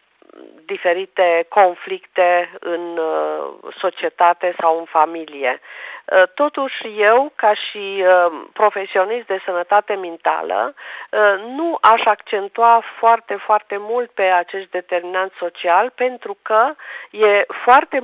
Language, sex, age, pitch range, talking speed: Romanian, female, 40-59, 175-240 Hz, 110 wpm